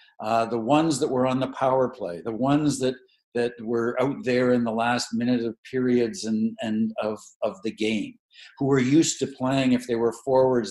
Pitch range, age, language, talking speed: 120-140 Hz, 60-79, English, 205 wpm